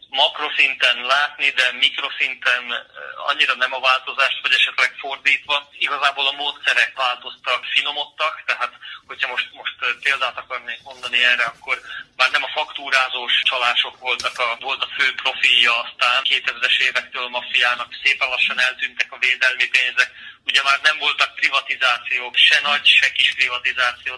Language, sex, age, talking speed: Hungarian, male, 30-49, 140 wpm